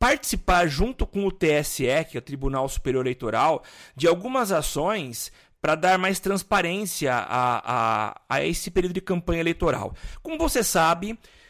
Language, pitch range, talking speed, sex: Portuguese, 145-200 Hz, 150 wpm, male